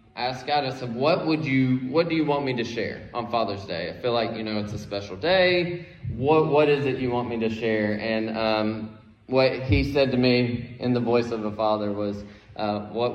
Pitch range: 105-135 Hz